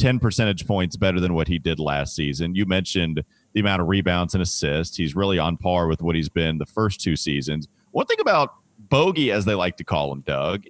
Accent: American